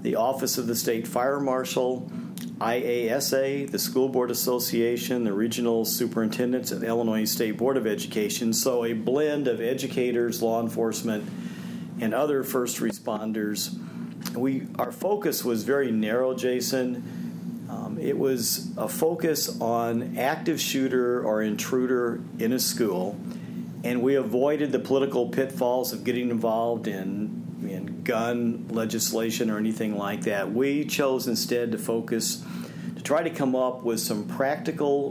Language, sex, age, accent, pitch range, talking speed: English, male, 50-69, American, 115-135 Hz, 140 wpm